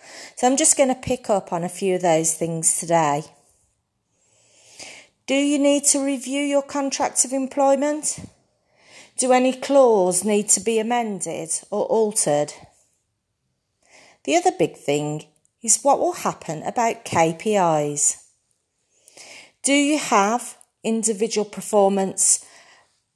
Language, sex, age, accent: English, female, 40-59, British